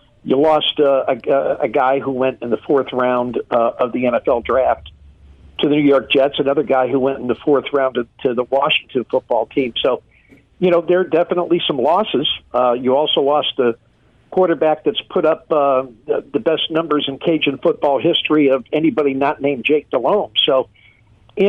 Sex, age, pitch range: male, 50-69, 125-155 Hz